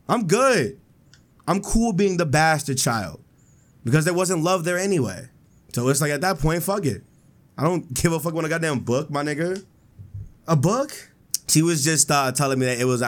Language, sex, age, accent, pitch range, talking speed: English, male, 20-39, American, 125-165 Hz, 200 wpm